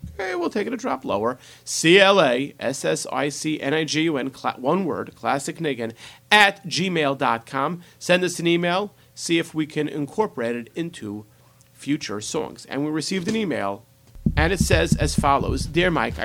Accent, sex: American, male